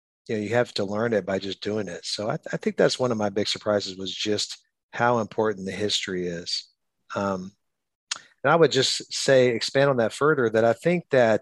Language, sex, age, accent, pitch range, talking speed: English, male, 50-69, American, 100-115 Hz, 225 wpm